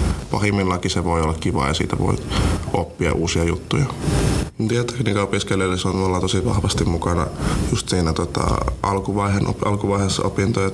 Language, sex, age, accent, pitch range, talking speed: English, male, 20-39, Finnish, 95-110 Hz, 135 wpm